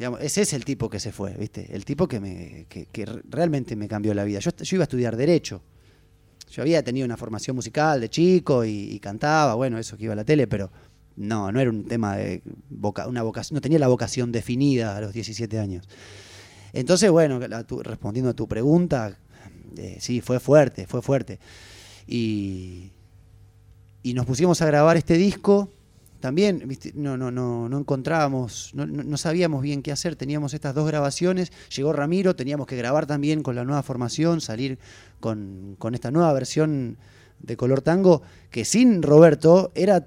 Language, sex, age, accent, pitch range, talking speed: Spanish, male, 20-39, Argentinian, 105-145 Hz, 180 wpm